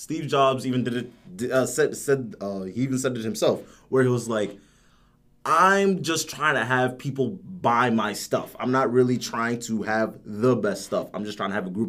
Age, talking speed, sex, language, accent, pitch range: 20-39, 215 wpm, male, English, American, 115-140 Hz